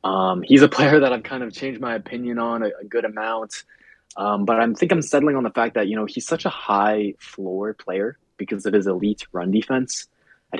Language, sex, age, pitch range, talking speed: English, male, 20-39, 95-125 Hz, 230 wpm